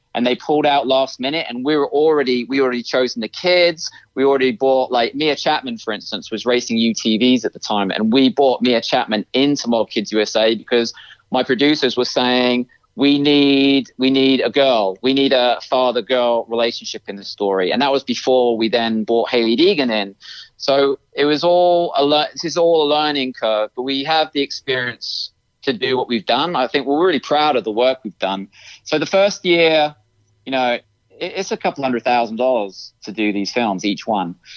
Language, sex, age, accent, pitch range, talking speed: English, male, 30-49, British, 115-140 Hz, 210 wpm